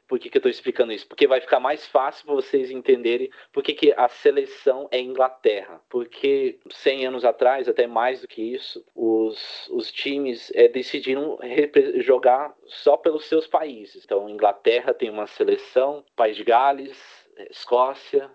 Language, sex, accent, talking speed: Portuguese, male, Brazilian, 160 wpm